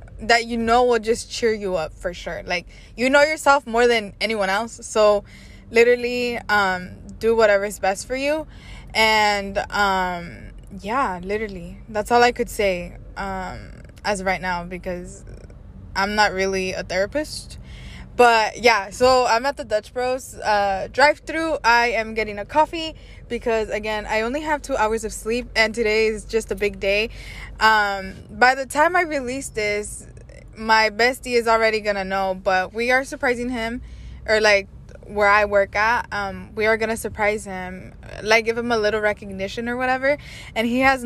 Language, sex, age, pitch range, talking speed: English, female, 20-39, 205-255 Hz, 180 wpm